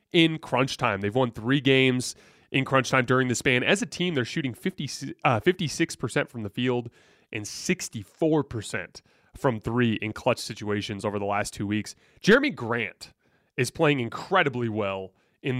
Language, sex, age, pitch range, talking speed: English, male, 30-49, 110-155 Hz, 160 wpm